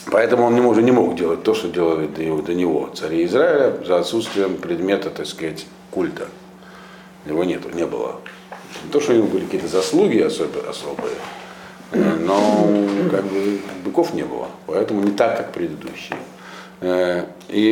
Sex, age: male, 50-69